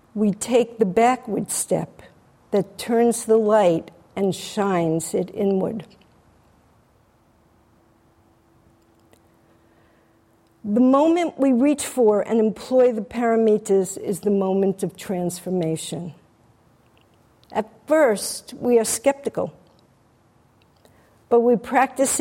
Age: 50-69